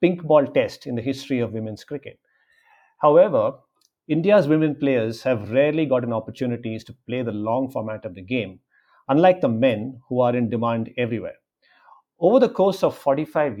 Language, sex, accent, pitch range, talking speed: English, male, Indian, 120-160 Hz, 170 wpm